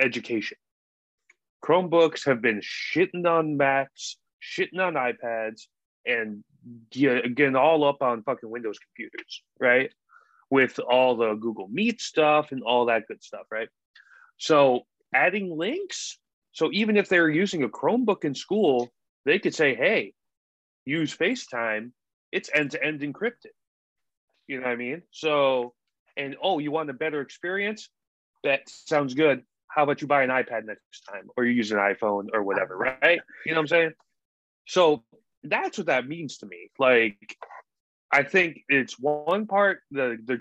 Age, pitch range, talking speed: 30-49, 120-170 Hz, 160 wpm